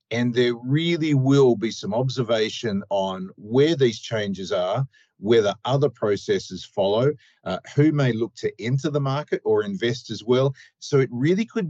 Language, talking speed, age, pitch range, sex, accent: English, 165 wpm, 50-69, 115-150 Hz, male, Australian